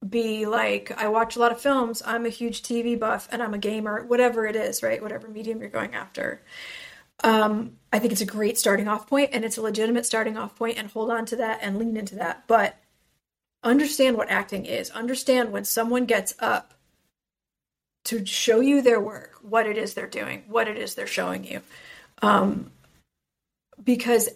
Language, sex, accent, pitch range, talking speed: English, female, American, 215-245 Hz, 195 wpm